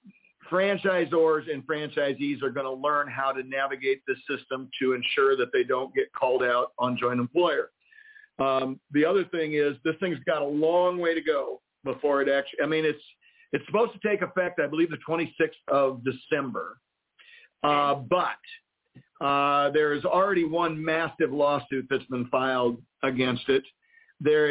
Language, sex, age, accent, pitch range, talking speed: English, male, 50-69, American, 135-175 Hz, 165 wpm